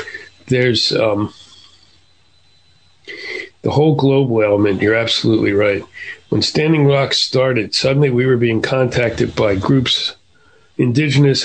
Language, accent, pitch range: English, American, 110-140 Hz